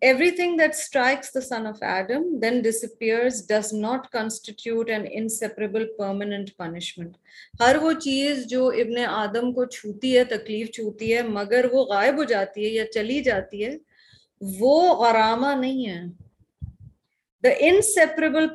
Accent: Indian